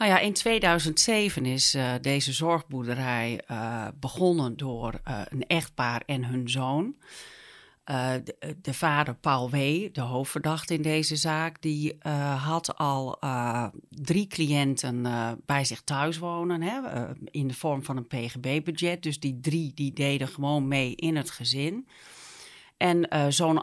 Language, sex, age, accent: Dutch, female, 40-59, Dutch